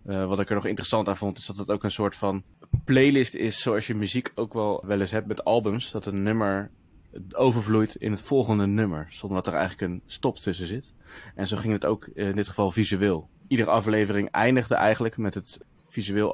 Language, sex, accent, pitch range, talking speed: Dutch, male, Dutch, 100-115 Hz, 215 wpm